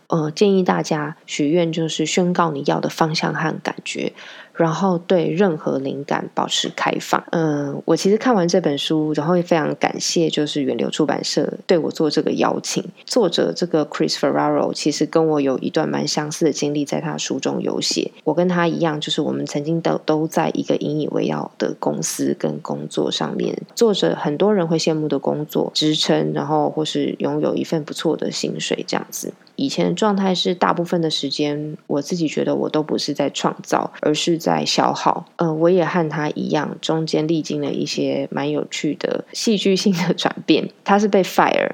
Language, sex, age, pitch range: Chinese, female, 20-39, 150-180 Hz